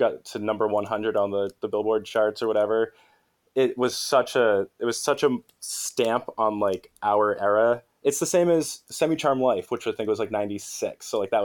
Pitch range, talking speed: 105-125 Hz, 210 wpm